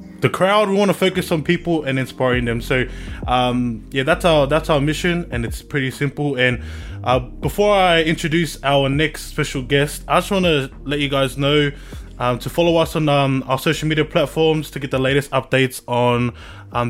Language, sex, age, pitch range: English, male, 20-39, 125-155 Hz